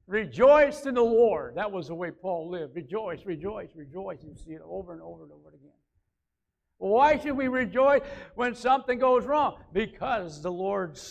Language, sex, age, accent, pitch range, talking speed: English, male, 60-79, American, 160-230 Hz, 180 wpm